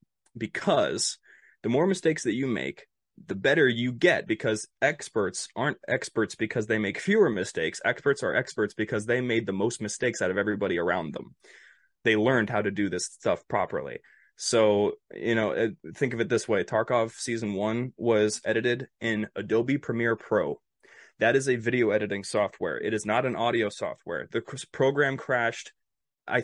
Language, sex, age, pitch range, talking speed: English, male, 20-39, 105-130 Hz, 170 wpm